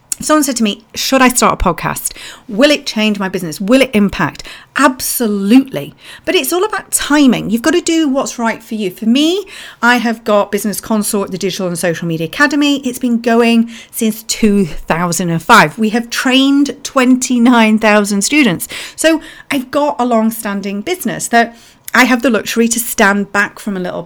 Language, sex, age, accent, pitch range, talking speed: English, female, 40-59, British, 200-270 Hz, 180 wpm